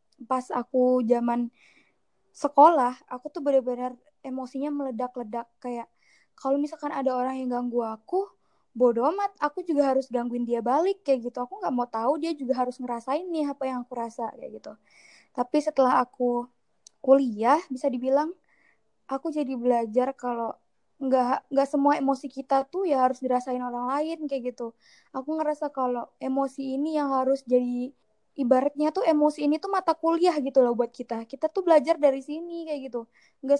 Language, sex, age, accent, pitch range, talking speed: Indonesian, female, 20-39, native, 250-295 Hz, 165 wpm